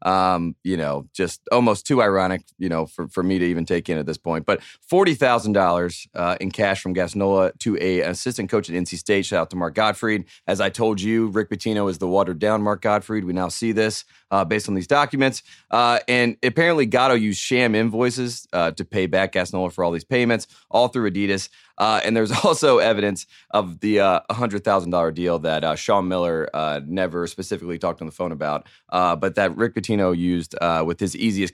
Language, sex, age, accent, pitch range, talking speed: English, male, 30-49, American, 95-120 Hz, 205 wpm